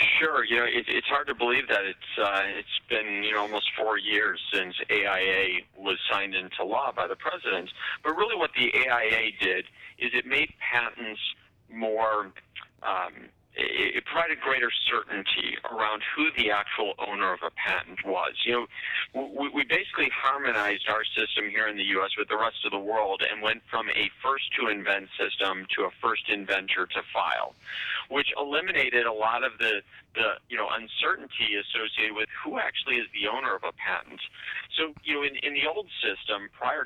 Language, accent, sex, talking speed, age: English, American, male, 175 wpm, 40-59